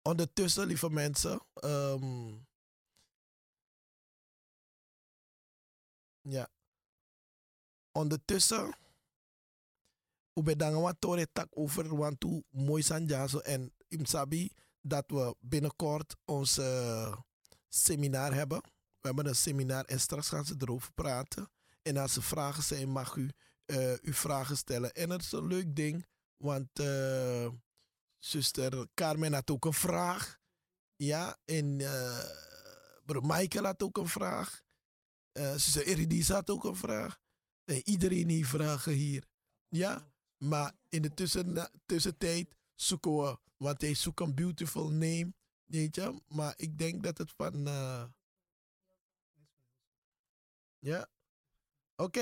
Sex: male